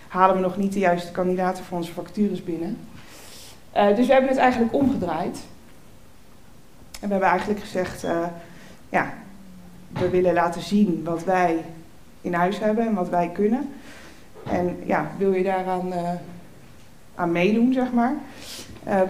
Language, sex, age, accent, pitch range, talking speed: Dutch, female, 20-39, Dutch, 175-205 Hz, 155 wpm